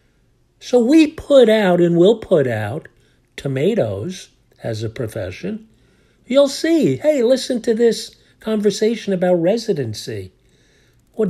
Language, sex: English, male